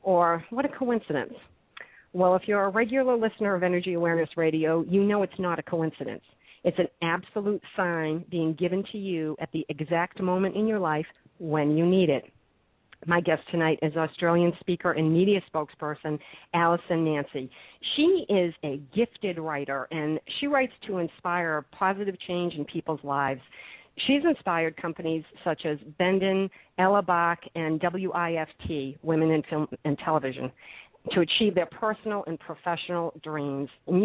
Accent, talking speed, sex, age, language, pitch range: American, 155 wpm, female, 50-69, English, 155-195 Hz